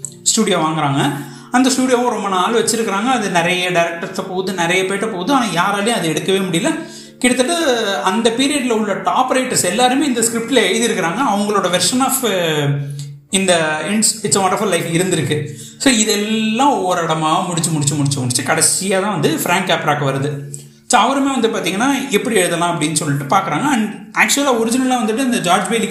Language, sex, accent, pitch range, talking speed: Tamil, male, native, 160-230 Hz, 155 wpm